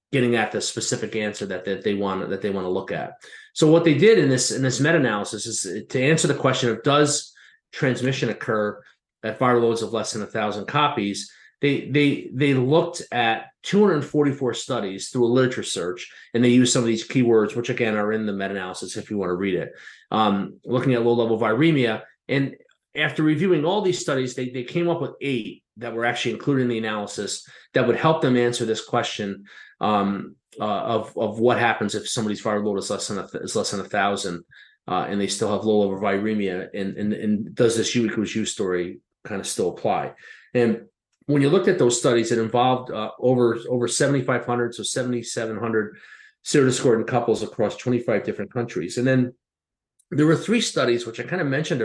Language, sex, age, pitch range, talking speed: English, male, 30-49, 110-135 Hz, 195 wpm